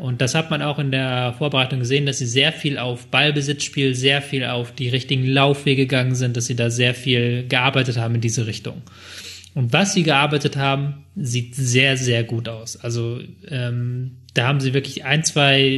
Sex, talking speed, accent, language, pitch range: male, 195 wpm, German, German, 125-145 Hz